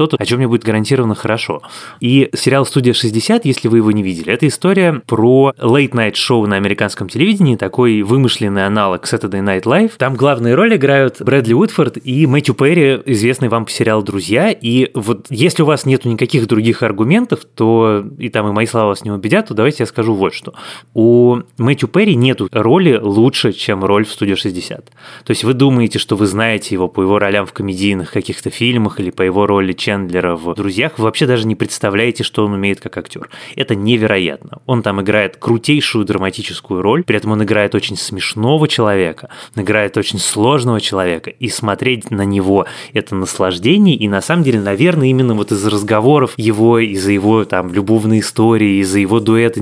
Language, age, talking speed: Russian, 20-39, 185 wpm